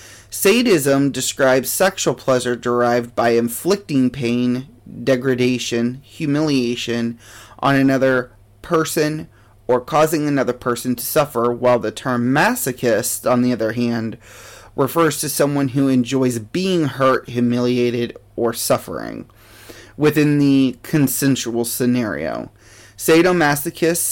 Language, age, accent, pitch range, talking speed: English, 30-49, American, 115-140 Hz, 105 wpm